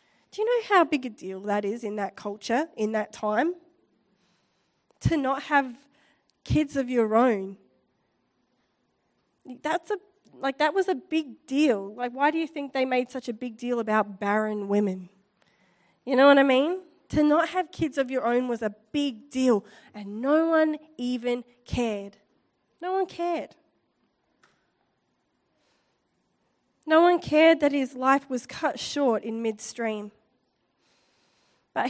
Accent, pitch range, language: Australian, 220-290 Hz, English